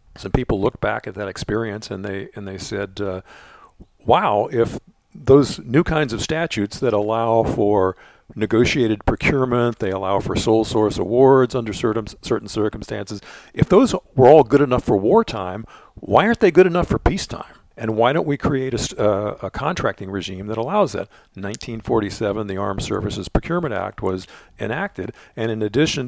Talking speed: 170 wpm